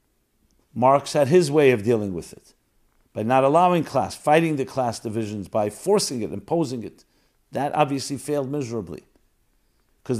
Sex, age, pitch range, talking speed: male, 50-69, 120-150 Hz, 155 wpm